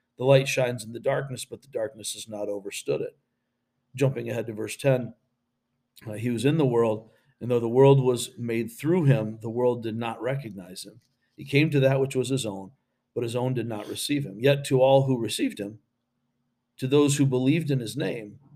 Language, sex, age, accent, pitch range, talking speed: English, male, 50-69, American, 115-135 Hz, 215 wpm